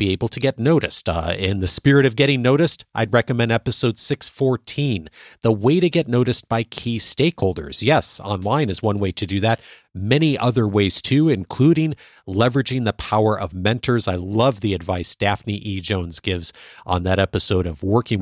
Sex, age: male, 40-59